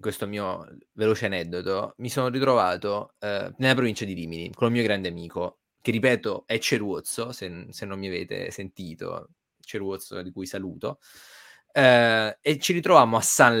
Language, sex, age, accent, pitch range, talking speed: Italian, male, 20-39, native, 95-125 Hz, 165 wpm